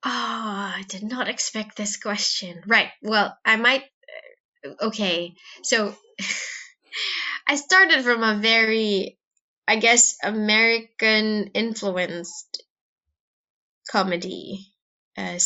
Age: 20-39